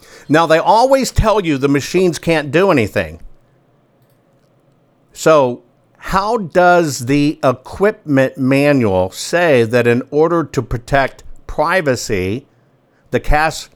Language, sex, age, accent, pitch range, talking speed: English, male, 50-69, American, 130-165 Hz, 110 wpm